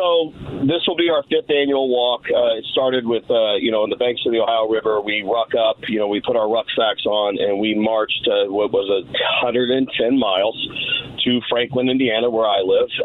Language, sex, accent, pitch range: English, male, American, 115-170 Hz